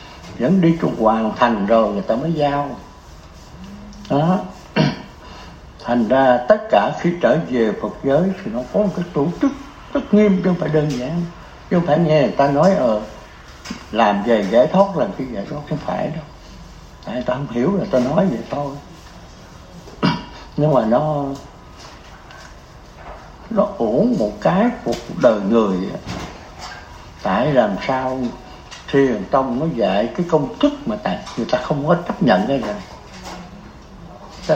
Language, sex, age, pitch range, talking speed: Vietnamese, male, 60-79, 125-195 Hz, 165 wpm